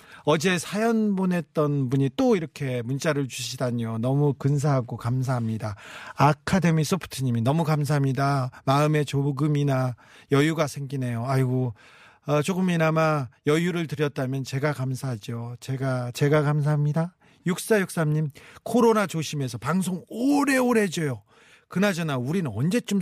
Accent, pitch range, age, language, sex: native, 130-190 Hz, 40-59, Korean, male